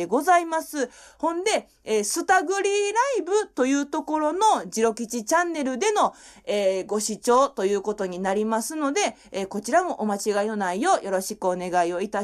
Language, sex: Japanese, female